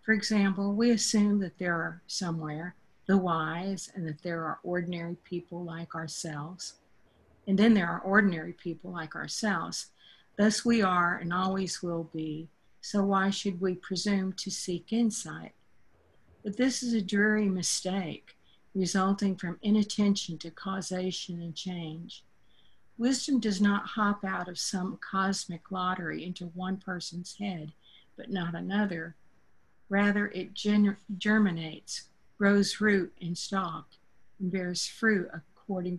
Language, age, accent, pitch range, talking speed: English, 50-69, American, 175-205 Hz, 135 wpm